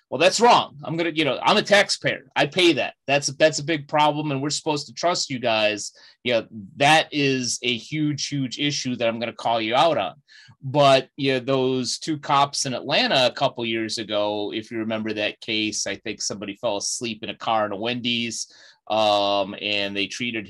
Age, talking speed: 30-49, 205 wpm